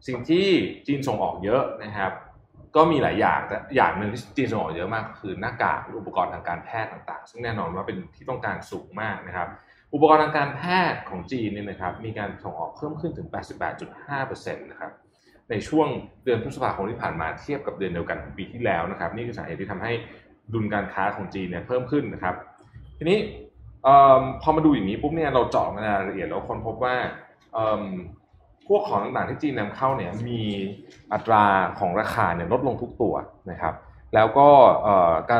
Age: 20-39